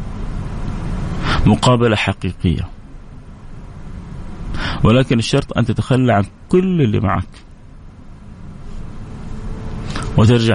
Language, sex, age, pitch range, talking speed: English, male, 30-49, 100-125 Hz, 65 wpm